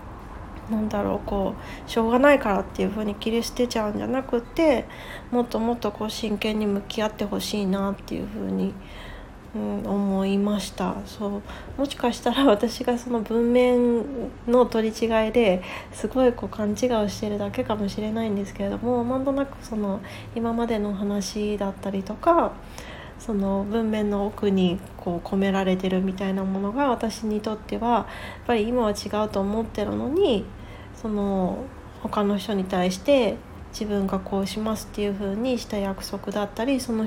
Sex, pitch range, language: female, 195-230 Hz, Japanese